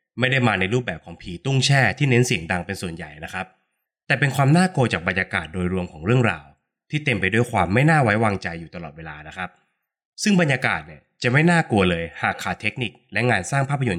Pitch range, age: 95-130 Hz, 20-39